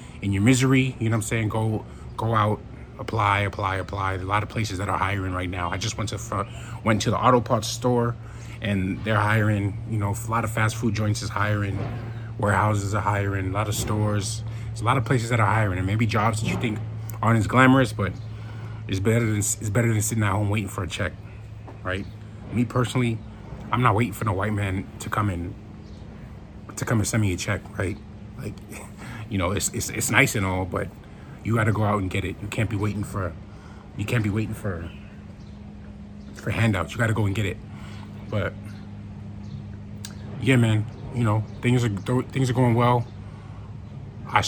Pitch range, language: 100-115 Hz, English